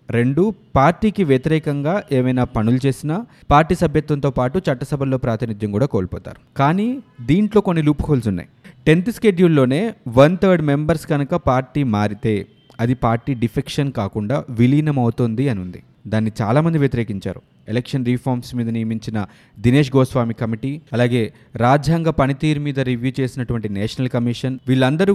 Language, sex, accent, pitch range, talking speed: Telugu, male, native, 115-155 Hz, 125 wpm